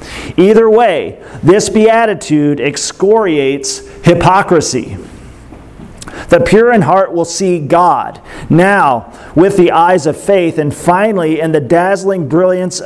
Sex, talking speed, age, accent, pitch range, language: male, 115 wpm, 40-59, American, 150-180 Hz, English